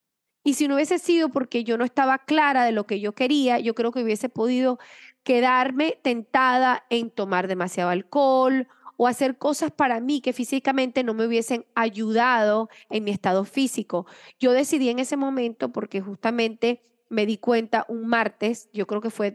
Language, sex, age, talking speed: English, female, 30-49, 175 wpm